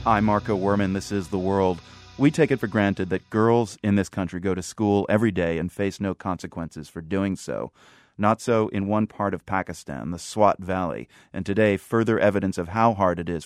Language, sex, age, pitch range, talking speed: English, male, 30-49, 90-110 Hz, 215 wpm